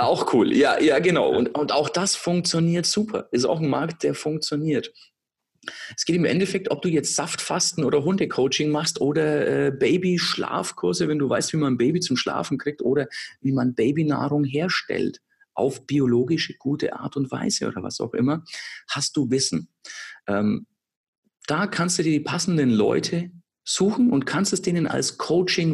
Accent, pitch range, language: German, 125-175 Hz, German